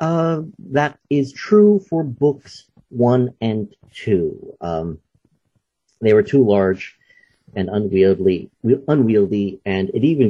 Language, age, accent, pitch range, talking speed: English, 50-69, American, 95-135 Hz, 115 wpm